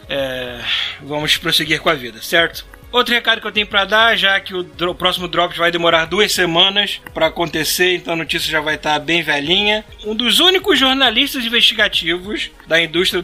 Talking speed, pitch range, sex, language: 185 wpm, 170-220 Hz, male, Portuguese